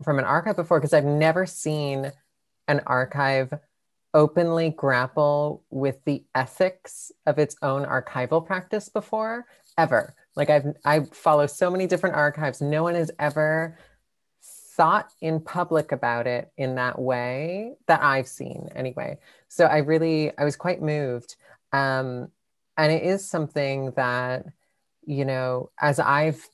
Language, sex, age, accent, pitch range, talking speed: English, female, 30-49, American, 130-160 Hz, 140 wpm